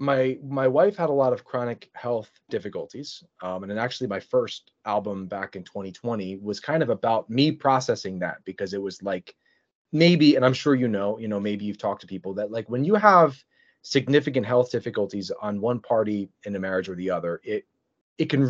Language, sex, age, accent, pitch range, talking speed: English, male, 30-49, American, 115-160 Hz, 210 wpm